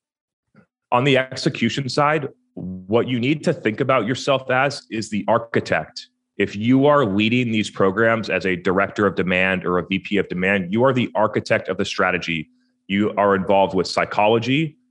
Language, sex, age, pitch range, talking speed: English, male, 30-49, 95-125 Hz, 175 wpm